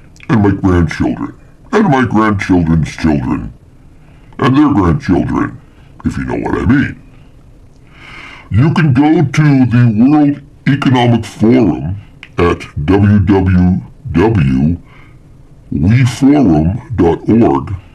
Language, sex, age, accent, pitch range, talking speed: English, female, 60-79, American, 90-135 Hz, 85 wpm